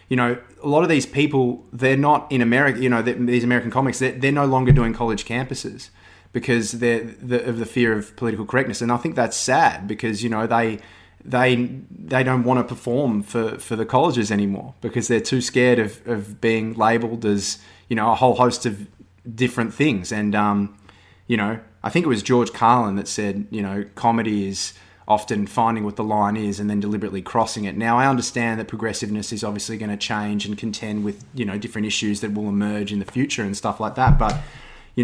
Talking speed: 215 wpm